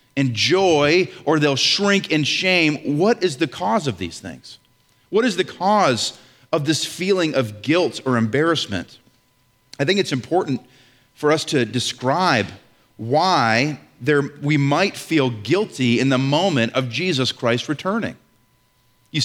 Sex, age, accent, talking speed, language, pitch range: male, 40-59, American, 145 wpm, English, 125-170 Hz